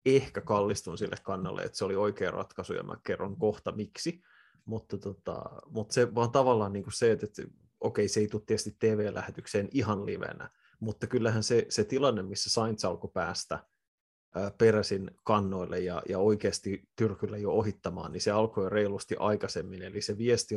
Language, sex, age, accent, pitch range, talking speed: Finnish, male, 30-49, native, 100-110 Hz, 175 wpm